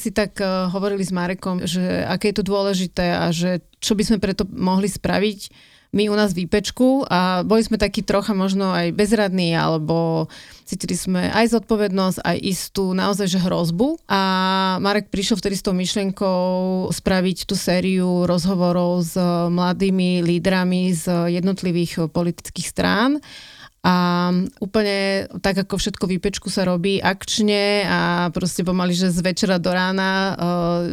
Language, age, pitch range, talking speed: Slovak, 30-49, 180-205 Hz, 145 wpm